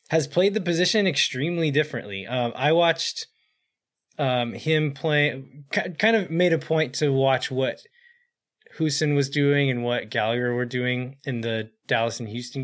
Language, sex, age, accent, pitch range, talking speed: English, male, 20-39, American, 120-150 Hz, 160 wpm